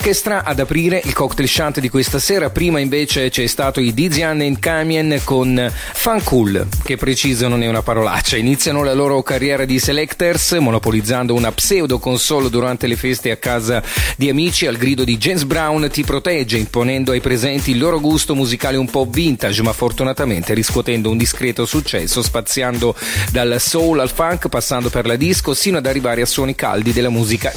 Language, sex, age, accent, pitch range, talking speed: Italian, male, 40-59, native, 120-145 Hz, 180 wpm